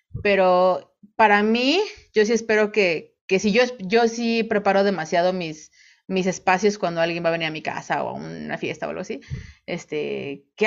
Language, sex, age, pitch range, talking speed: Spanish, female, 30-49, 180-225 Hz, 190 wpm